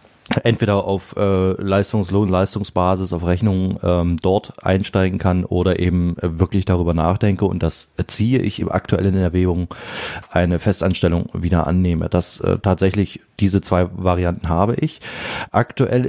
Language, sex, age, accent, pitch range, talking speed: German, male, 30-49, German, 90-100 Hz, 135 wpm